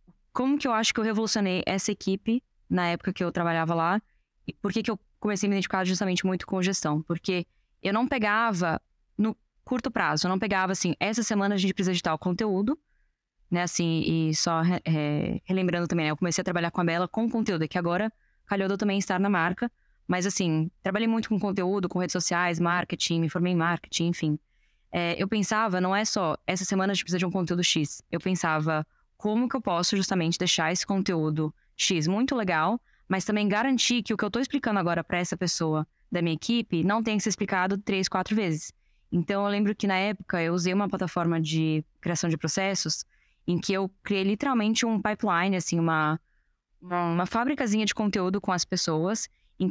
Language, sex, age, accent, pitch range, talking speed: Portuguese, female, 10-29, Brazilian, 175-210 Hz, 205 wpm